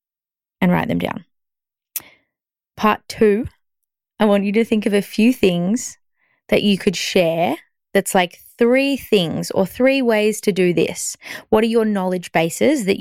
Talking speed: 160 wpm